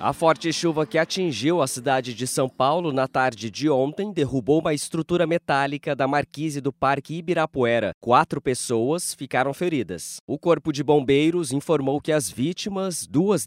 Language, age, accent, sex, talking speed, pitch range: English, 20-39, Brazilian, male, 160 wpm, 135-160 Hz